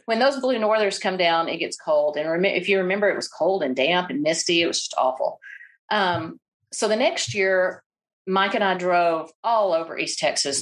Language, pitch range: English, 170-205 Hz